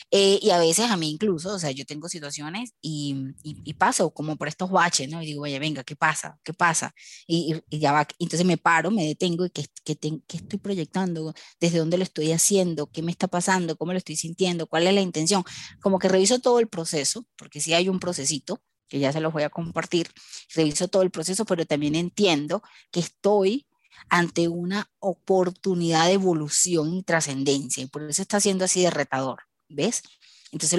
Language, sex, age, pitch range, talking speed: Spanish, female, 20-39, 150-190 Hz, 205 wpm